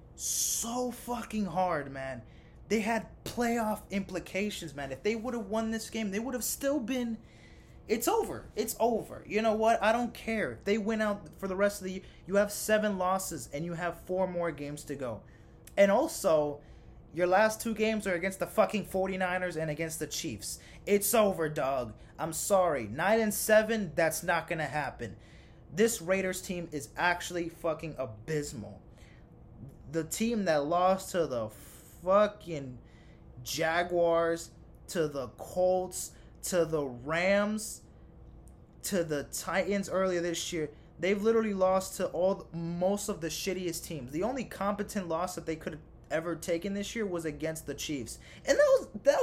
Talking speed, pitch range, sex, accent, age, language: 165 wpm, 155-215 Hz, male, American, 20-39, English